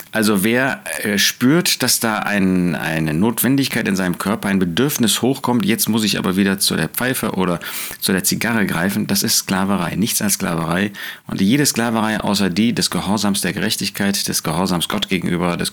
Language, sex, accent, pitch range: German, male, German, 95-115 Hz